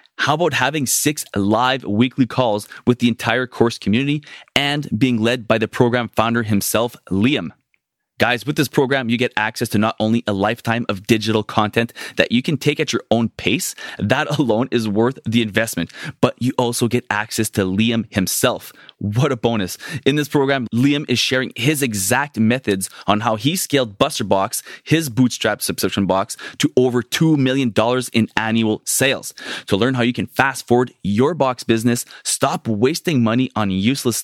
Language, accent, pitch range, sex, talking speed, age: English, Canadian, 110-130 Hz, male, 180 wpm, 20-39